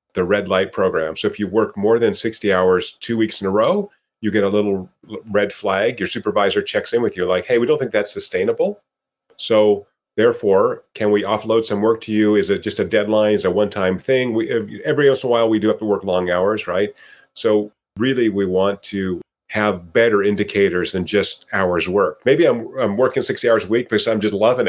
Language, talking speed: English, 225 wpm